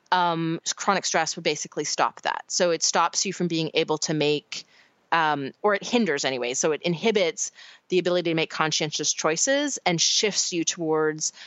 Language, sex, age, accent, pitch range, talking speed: English, female, 30-49, American, 165-205 Hz, 180 wpm